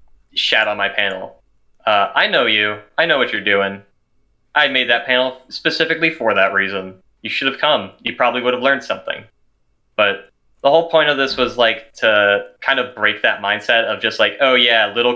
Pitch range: 105-130 Hz